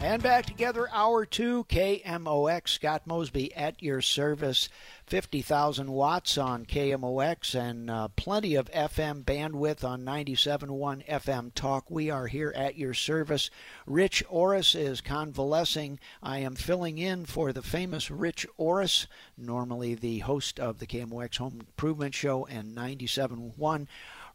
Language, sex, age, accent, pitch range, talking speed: English, male, 50-69, American, 125-155 Hz, 135 wpm